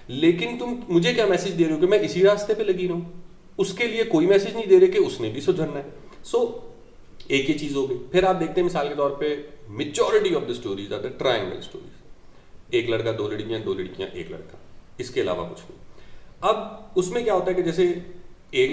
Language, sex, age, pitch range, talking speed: Urdu, male, 40-59, 125-205 Hz, 215 wpm